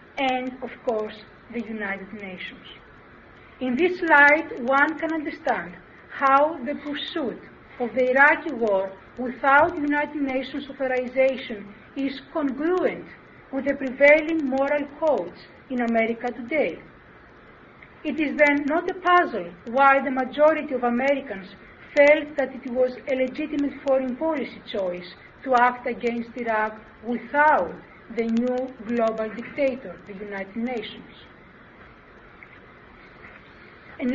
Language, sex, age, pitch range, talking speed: English, female, 40-59, 230-290 Hz, 115 wpm